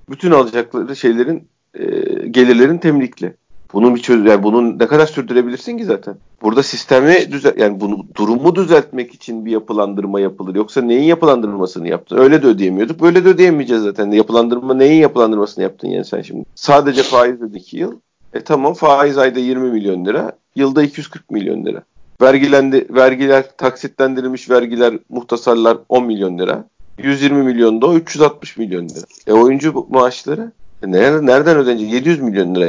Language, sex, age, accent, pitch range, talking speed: Turkish, male, 40-59, native, 110-135 Hz, 150 wpm